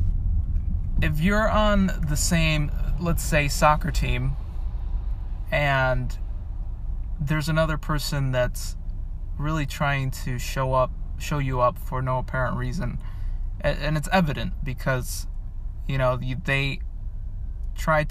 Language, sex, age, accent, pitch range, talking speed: English, male, 20-39, American, 85-130 Hz, 115 wpm